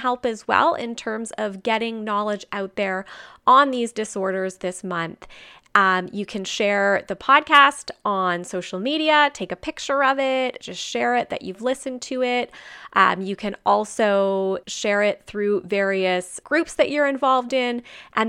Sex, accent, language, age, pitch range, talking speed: female, American, English, 20-39, 185-250 Hz, 165 wpm